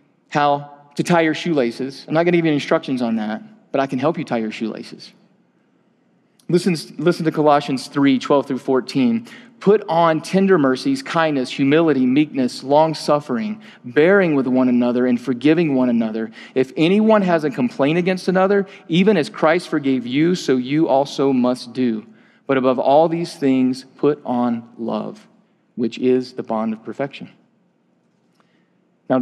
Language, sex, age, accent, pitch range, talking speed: English, male, 40-59, American, 130-170 Hz, 160 wpm